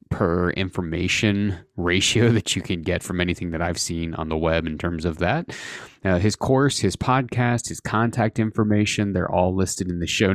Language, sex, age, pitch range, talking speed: English, male, 30-49, 85-105 Hz, 190 wpm